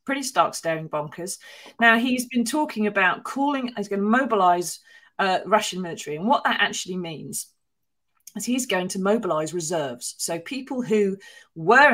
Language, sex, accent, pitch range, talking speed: English, female, British, 170-220 Hz, 155 wpm